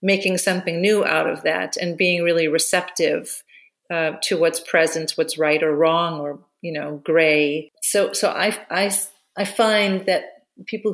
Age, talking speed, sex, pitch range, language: 40-59, 165 wpm, female, 160-200 Hz, English